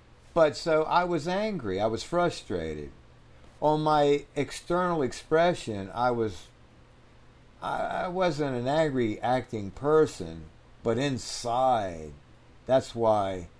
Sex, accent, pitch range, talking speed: male, American, 85-135 Hz, 120 wpm